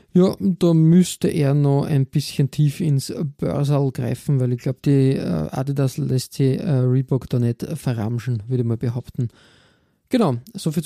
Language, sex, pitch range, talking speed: German, male, 135-165 Hz, 160 wpm